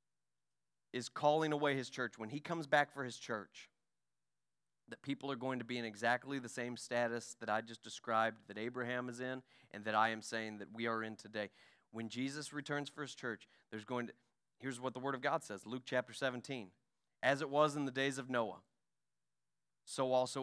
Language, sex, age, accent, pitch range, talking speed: English, male, 30-49, American, 110-145 Hz, 205 wpm